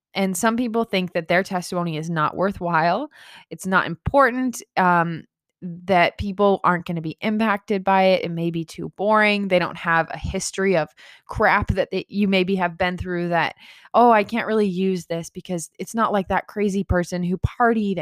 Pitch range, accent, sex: 185-235 Hz, American, female